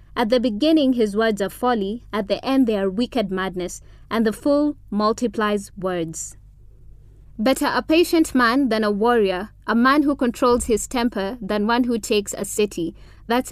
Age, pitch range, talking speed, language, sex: 20-39, 200-260 Hz, 175 wpm, English, female